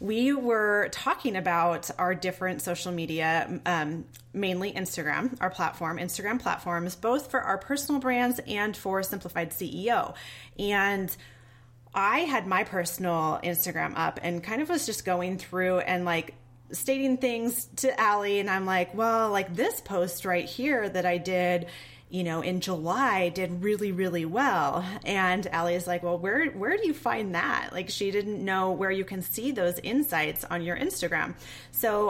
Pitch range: 170-210 Hz